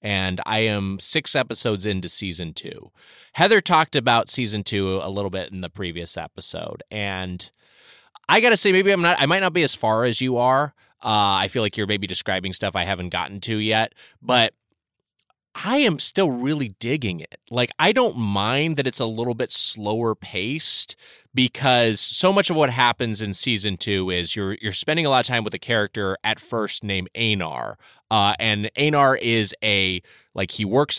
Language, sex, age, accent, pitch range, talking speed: English, male, 20-39, American, 95-125 Hz, 195 wpm